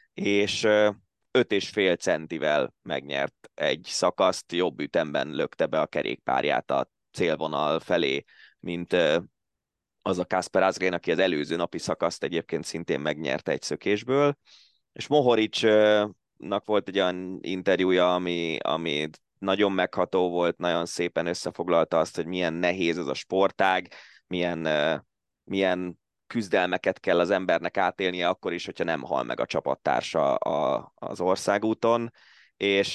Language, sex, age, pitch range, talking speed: Hungarian, male, 20-39, 85-110 Hz, 130 wpm